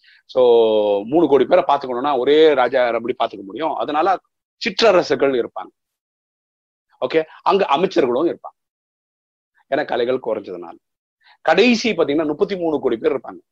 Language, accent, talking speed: Tamil, native, 120 wpm